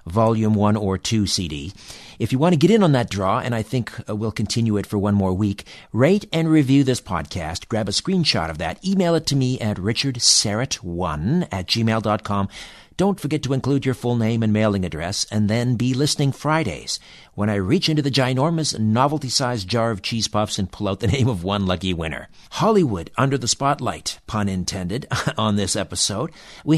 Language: English